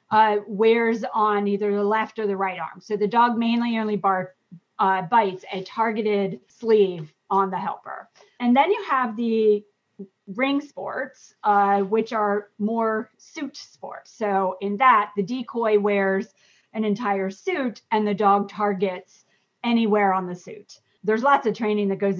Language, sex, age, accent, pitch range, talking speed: English, female, 30-49, American, 195-230 Hz, 160 wpm